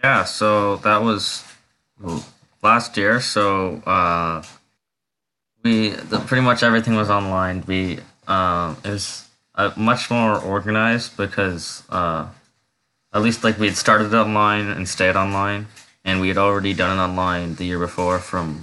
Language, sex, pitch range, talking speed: English, male, 90-105 Hz, 150 wpm